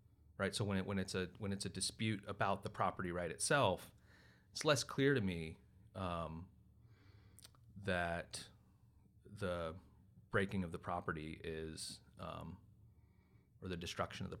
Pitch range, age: 90-105 Hz, 30-49